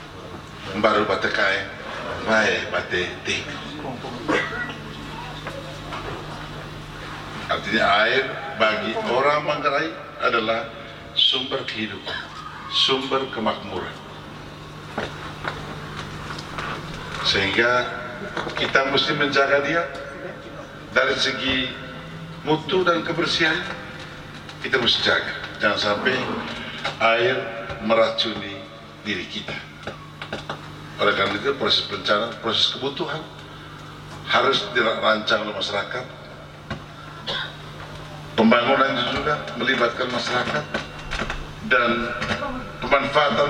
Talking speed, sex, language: 60 wpm, male, Indonesian